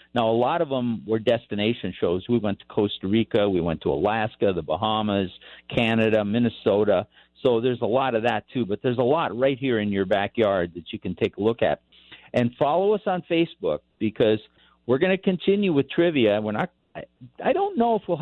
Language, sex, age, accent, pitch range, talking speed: English, male, 50-69, American, 110-145 Hz, 200 wpm